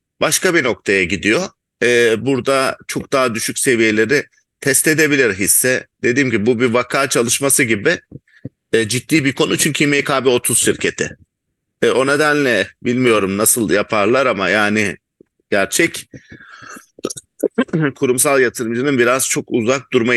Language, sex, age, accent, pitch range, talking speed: English, male, 50-69, Turkish, 110-135 Hz, 125 wpm